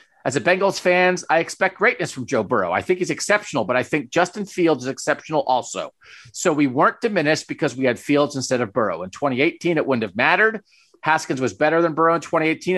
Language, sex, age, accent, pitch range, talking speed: English, male, 40-59, American, 130-175 Hz, 215 wpm